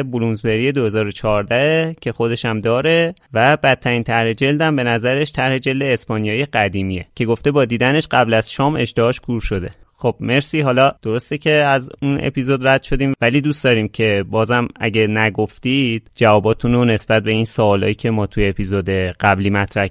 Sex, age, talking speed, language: male, 30-49, 165 wpm, Persian